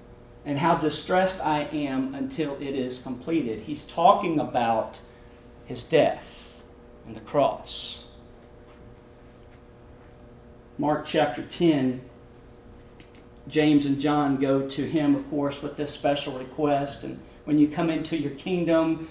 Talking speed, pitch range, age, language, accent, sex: 120 wpm, 125-160 Hz, 40-59, English, American, male